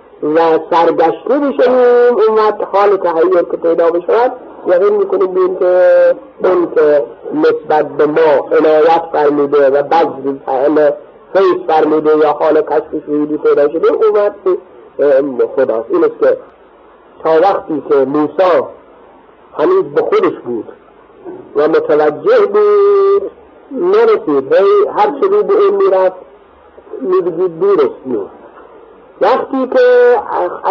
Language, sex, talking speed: Persian, male, 115 wpm